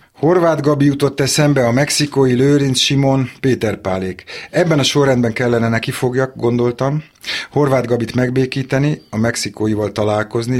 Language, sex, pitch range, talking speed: Hungarian, male, 110-130 Hz, 130 wpm